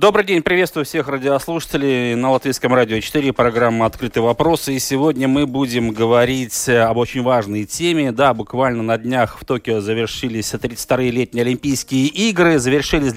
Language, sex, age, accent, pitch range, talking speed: Russian, male, 30-49, native, 130-165 Hz, 145 wpm